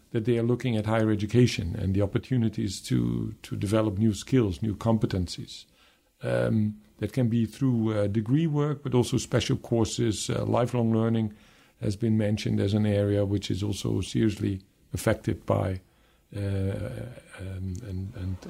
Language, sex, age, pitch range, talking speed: English, male, 50-69, 105-120 Hz, 150 wpm